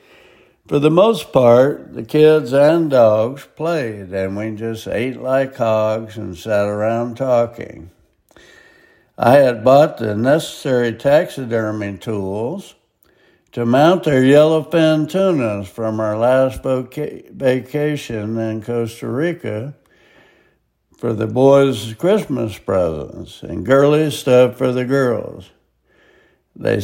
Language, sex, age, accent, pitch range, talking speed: English, male, 60-79, American, 110-140 Hz, 110 wpm